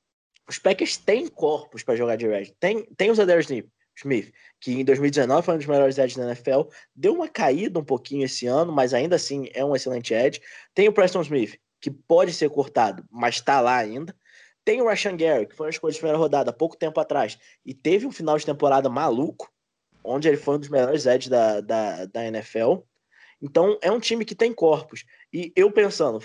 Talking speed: 210 wpm